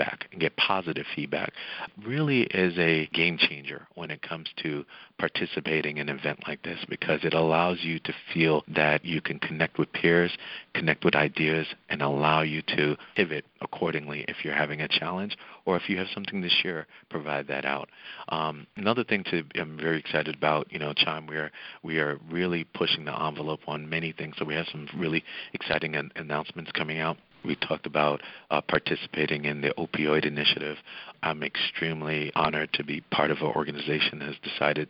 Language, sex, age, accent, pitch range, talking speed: English, male, 50-69, American, 75-80 Hz, 180 wpm